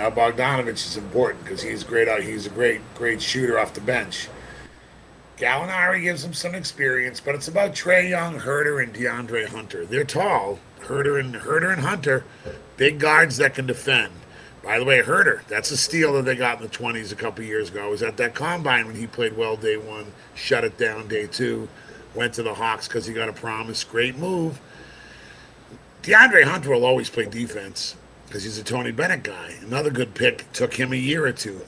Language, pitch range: English, 115-145 Hz